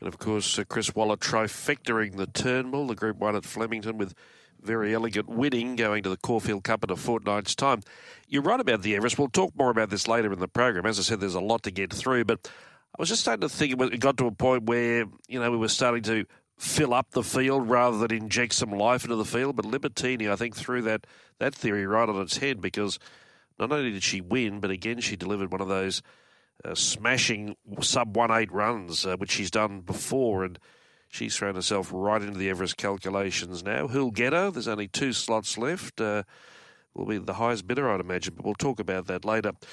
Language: English